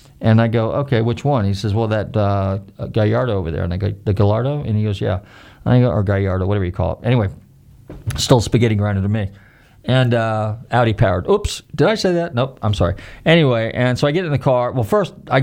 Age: 40-59